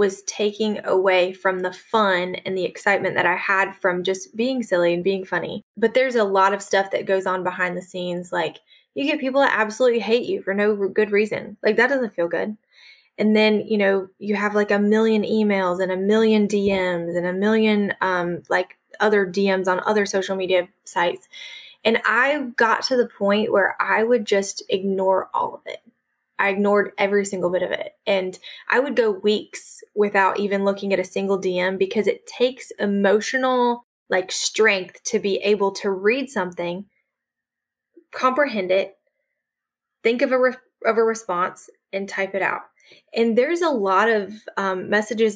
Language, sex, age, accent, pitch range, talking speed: English, female, 20-39, American, 190-225 Hz, 185 wpm